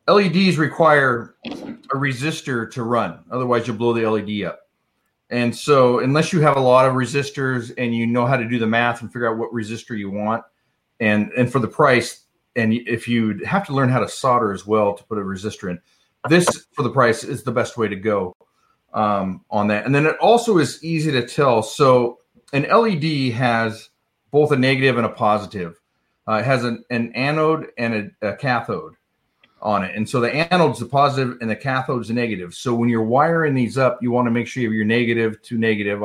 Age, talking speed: 40-59, 215 wpm